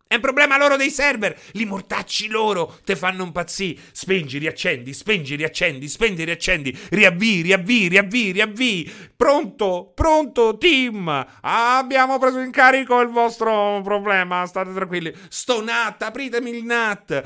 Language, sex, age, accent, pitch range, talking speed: Italian, male, 30-49, native, 135-205 Hz, 140 wpm